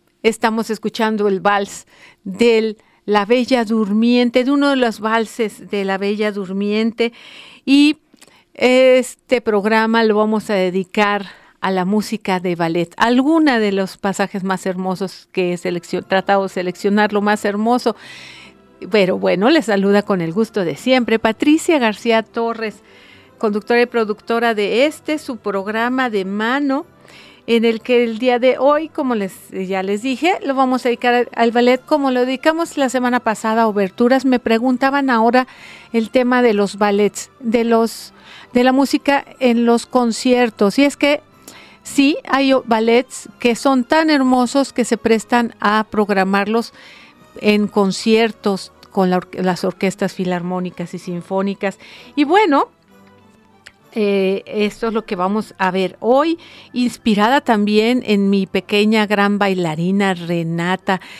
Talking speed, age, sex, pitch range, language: 145 wpm, 50-69, female, 195-245 Hz, Spanish